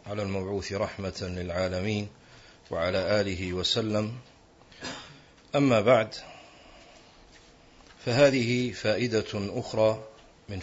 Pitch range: 105-130 Hz